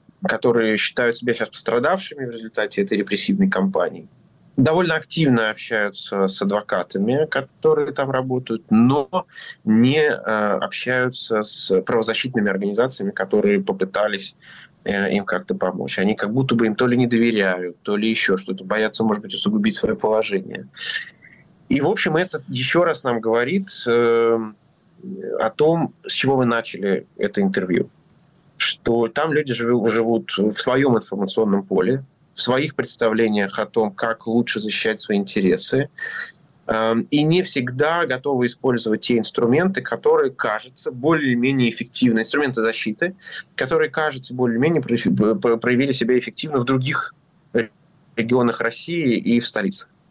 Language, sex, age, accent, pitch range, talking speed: Russian, male, 20-39, native, 115-155 Hz, 135 wpm